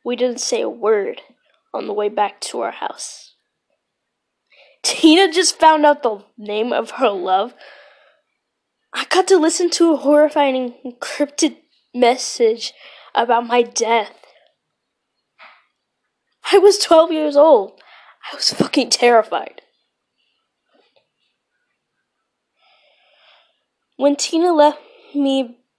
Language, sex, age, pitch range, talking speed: English, female, 10-29, 220-330 Hz, 105 wpm